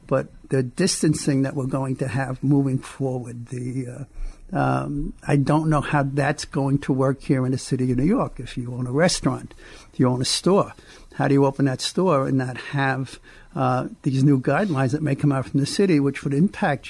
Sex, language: male, English